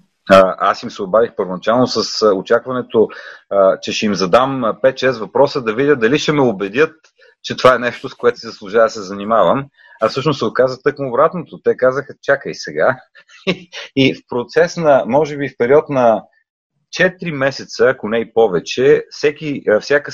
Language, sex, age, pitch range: Bulgarian, male, 30-49, 120-200 Hz